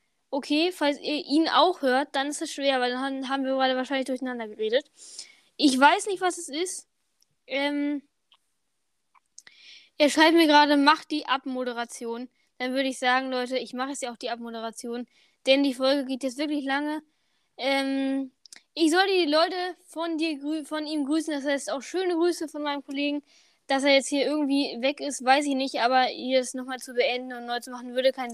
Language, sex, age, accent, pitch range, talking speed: German, female, 10-29, German, 250-300 Hz, 190 wpm